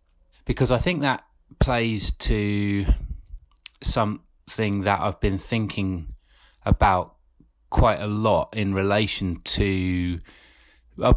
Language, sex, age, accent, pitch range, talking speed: English, male, 30-49, British, 85-115 Hz, 100 wpm